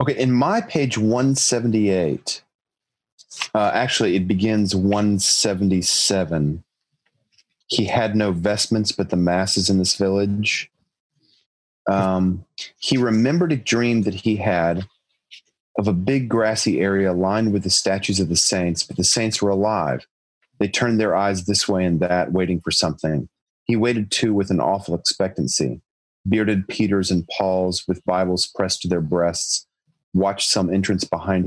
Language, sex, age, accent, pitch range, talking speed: English, male, 30-49, American, 90-105 Hz, 145 wpm